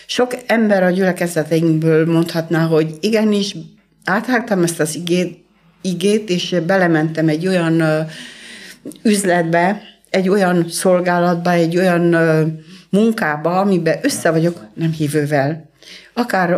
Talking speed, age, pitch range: 100 wpm, 60-79, 160-190 Hz